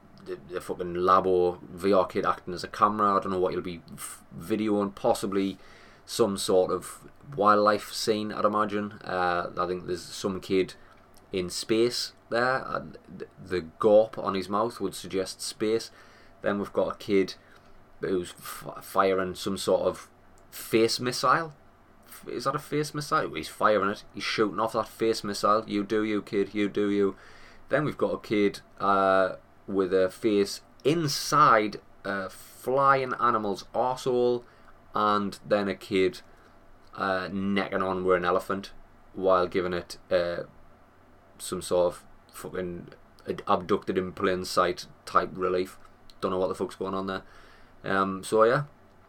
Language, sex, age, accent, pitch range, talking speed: English, male, 20-39, British, 90-105 Hz, 150 wpm